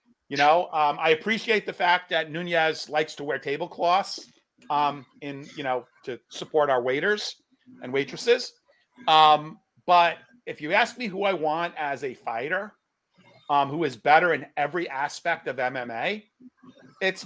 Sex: male